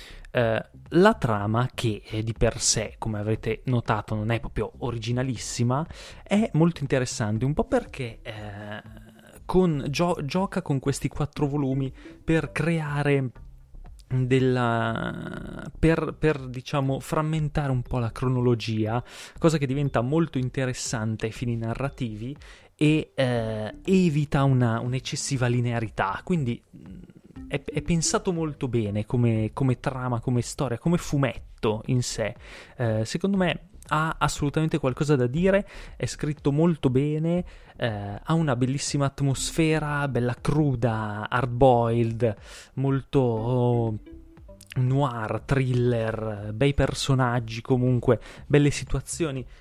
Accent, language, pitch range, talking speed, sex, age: native, Italian, 115-150 Hz, 110 wpm, male, 20-39